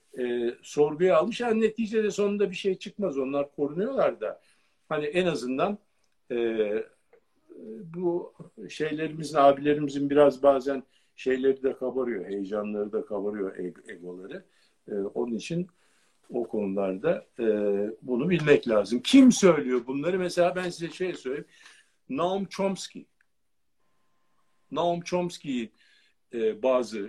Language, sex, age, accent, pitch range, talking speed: Turkish, male, 50-69, native, 115-185 Hz, 115 wpm